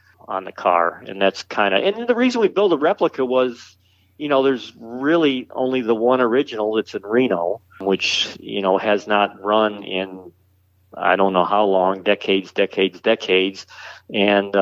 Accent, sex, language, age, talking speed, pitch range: American, male, English, 50-69, 170 wpm, 100-135 Hz